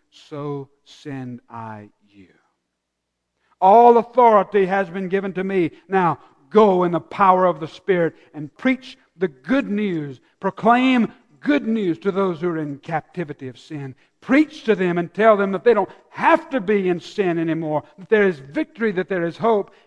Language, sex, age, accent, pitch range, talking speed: English, male, 60-79, American, 115-180 Hz, 175 wpm